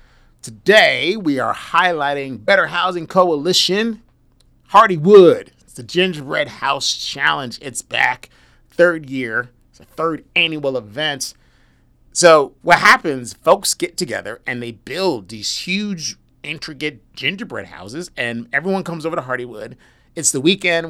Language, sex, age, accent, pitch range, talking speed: English, male, 30-49, American, 125-170 Hz, 130 wpm